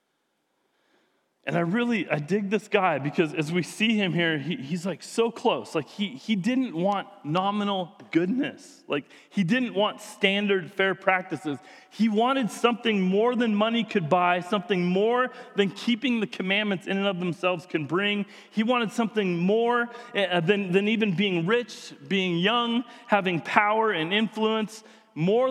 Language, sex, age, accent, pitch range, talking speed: English, male, 30-49, American, 175-230 Hz, 160 wpm